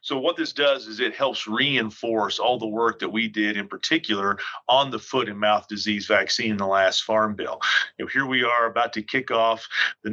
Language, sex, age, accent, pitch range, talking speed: English, male, 40-59, American, 110-125 Hz, 215 wpm